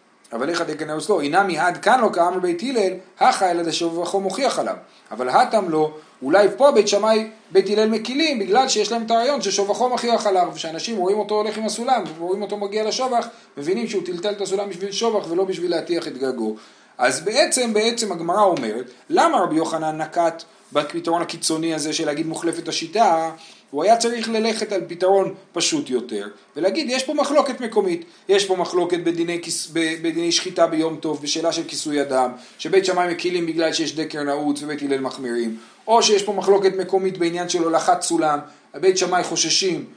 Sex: male